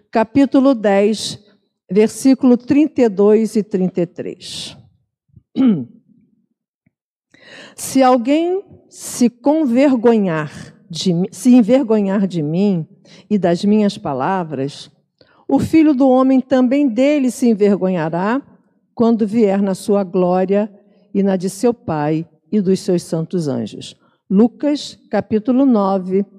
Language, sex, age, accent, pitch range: Portuguese, female, 50-69, Brazilian, 190-250 Hz